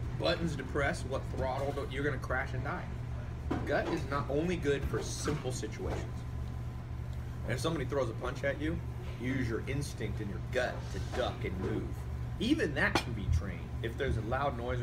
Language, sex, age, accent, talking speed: English, male, 30-49, American, 190 wpm